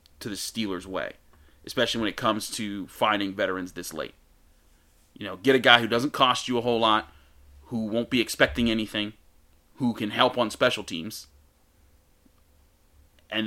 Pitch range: 100-125 Hz